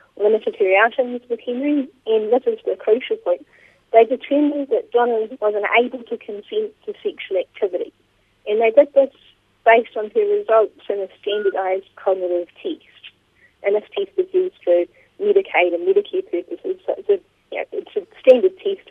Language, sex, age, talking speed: English, female, 30-49, 160 wpm